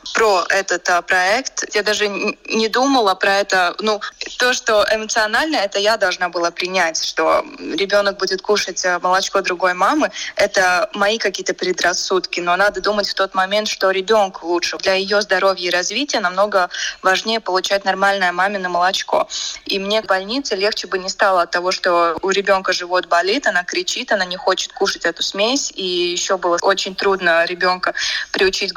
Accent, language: native, Russian